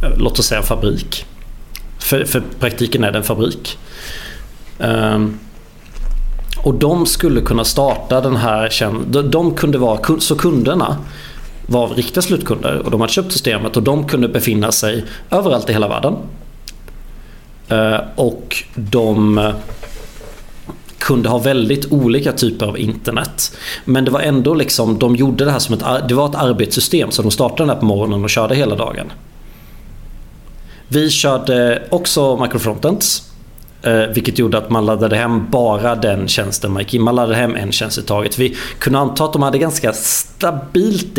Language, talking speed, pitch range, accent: Swedish, 150 wpm, 110-135 Hz, native